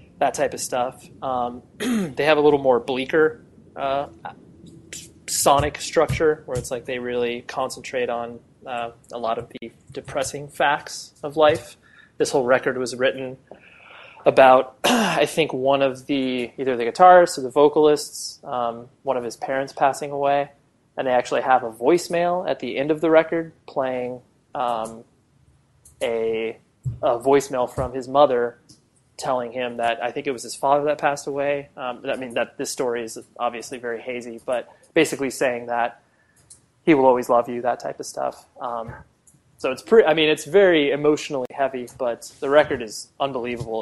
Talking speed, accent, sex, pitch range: 170 wpm, American, male, 120-145 Hz